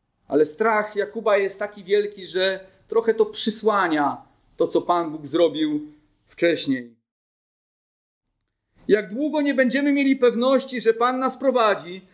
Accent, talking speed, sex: native, 130 wpm, male